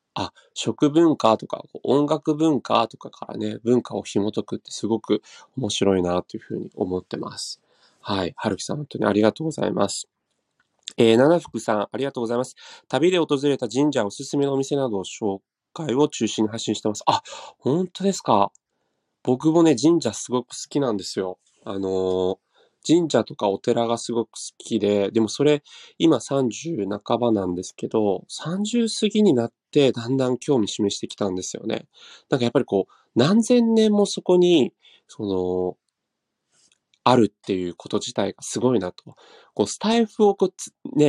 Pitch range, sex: 105-160 Hz, male